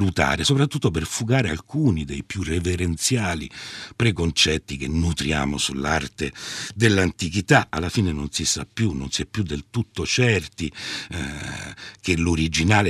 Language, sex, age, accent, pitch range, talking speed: Italian, male, 60-79, native, 80-115 Hz, 130 wpm